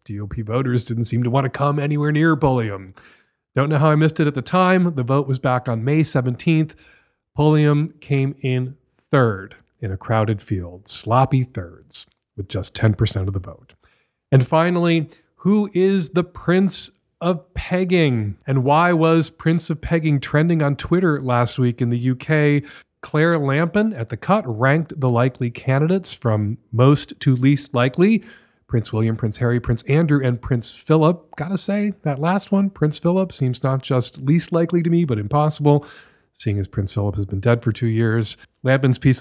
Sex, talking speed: male, 180 wpm